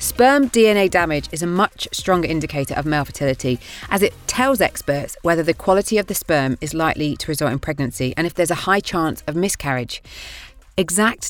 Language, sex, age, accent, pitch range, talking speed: English, female, 30-49, British, 140-190 Hz, 190 wpm